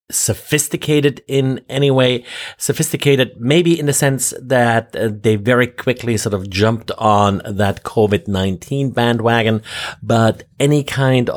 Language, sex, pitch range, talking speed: English, male, 105-135 Hz, 120 wpm